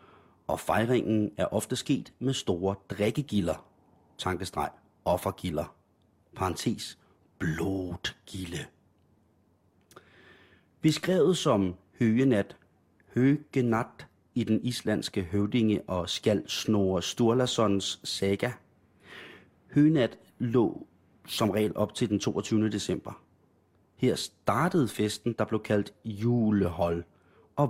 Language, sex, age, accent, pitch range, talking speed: Danish, male, 30-49, native, 95-120 Hz, 90 wpm